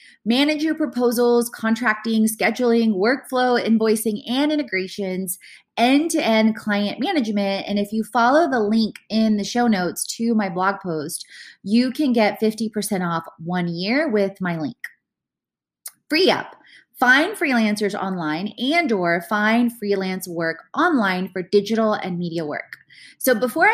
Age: 20-39